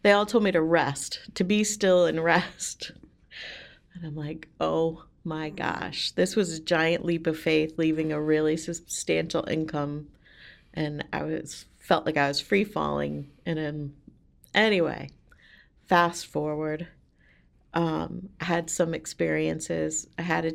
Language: English